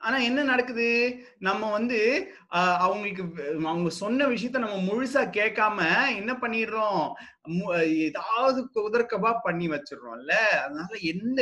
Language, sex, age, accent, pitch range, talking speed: Tamil, male, 30-49, native, 165-225 Hz, 110 wpm